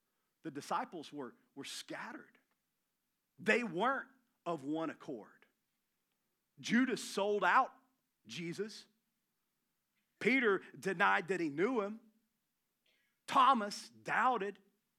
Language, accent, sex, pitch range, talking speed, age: English, American, male, 165-225 Hz, 90 wpm, 40-59